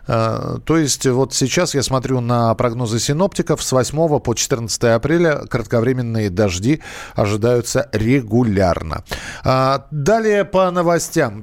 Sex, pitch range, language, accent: male, 125-160 Hz, Russian, native